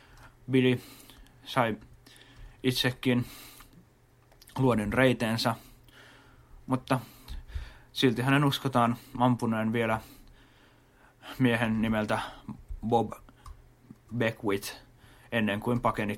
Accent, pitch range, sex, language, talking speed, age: native, 115-130 Hz, male, Finnish, 65 wpm, 30-49